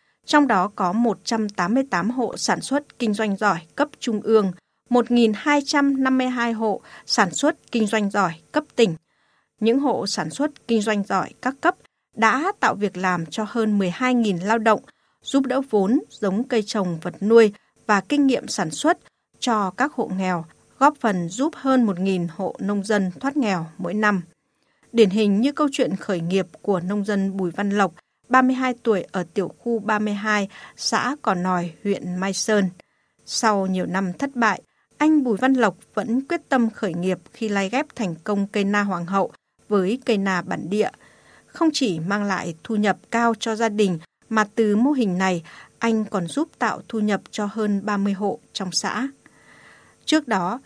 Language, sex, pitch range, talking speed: Vietnamese, female, 195-245 Hz, 180 wpm